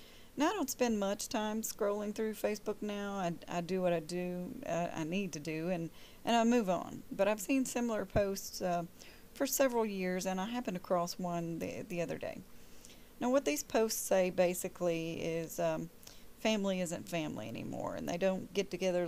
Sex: female